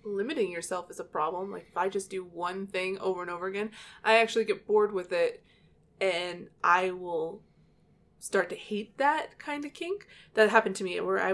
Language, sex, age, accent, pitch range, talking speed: English, female, 20-39, American, 185-220 Hz, 200 wpm